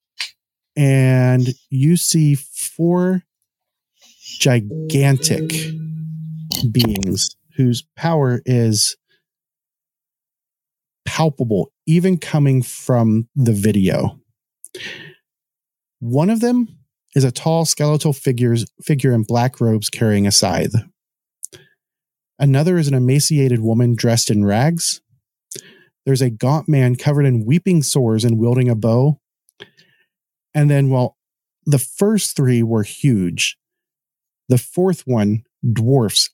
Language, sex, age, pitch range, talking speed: English, male, 40-59, 115-150 Hz, 100 wpm